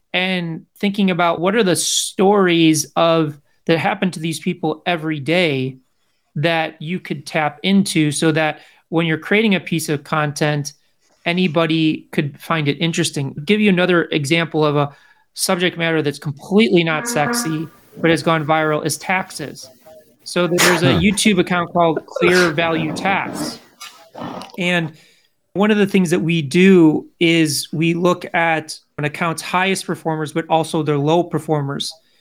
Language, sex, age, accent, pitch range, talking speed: English, male, 30-49, American, 155-185 Hz, 155 wpm